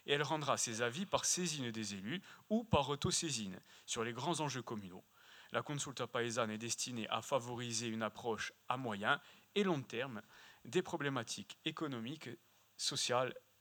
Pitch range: 115-160 Hz